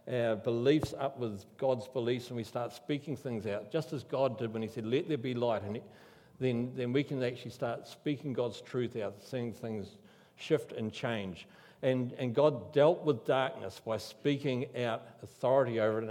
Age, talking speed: 60-79, 195 wpm